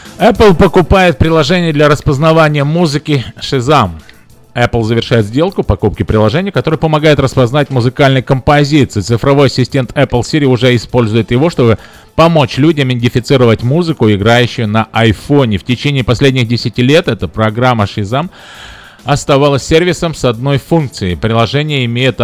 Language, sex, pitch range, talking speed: Russian, male, 120-155 Hz, 125 wpm